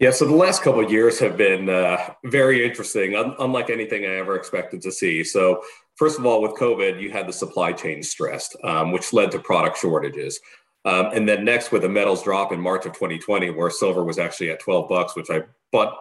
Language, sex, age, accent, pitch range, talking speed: English, male, 40-59, American, 90-140 Hz, 225 wpm